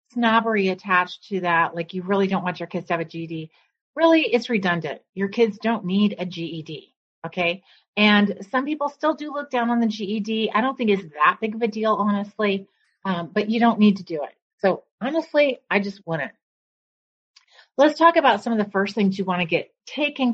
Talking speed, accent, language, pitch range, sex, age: 210 wpm, American, English, 175-230 Hz, female, 30-49